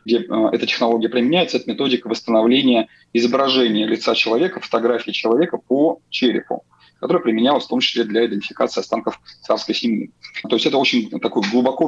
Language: Russian